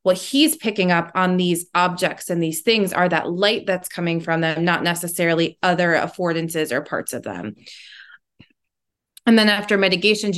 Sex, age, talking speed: female, 20-39, 170 wpm